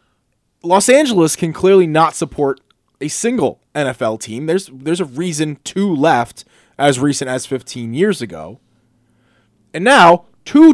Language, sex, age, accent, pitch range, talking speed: English, male, 30-49, American, 135-180 Hz, 140 wpm